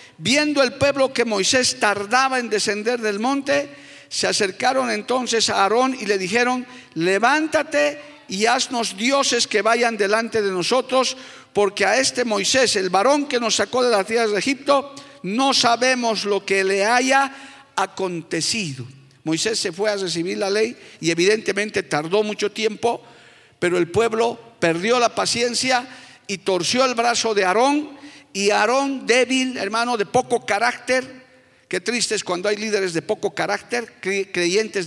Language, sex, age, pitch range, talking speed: Spanish, male, 50-69, 200-255 Hz, 155 wpm